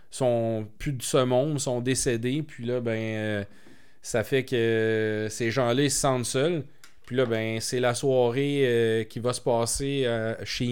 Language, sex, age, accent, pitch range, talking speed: French, male, 30-49, Canadian, 120-140 Hz, 190 wpm